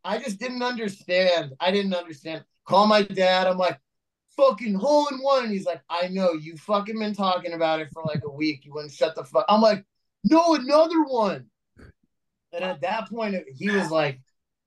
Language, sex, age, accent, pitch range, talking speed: English, male, 30-49, American, 150-185 Hz, 195 wpm